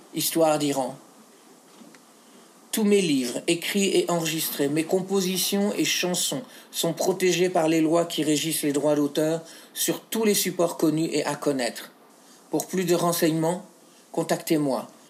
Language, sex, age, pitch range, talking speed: French, male, 50-69, 150-180 Hz, 140 wpm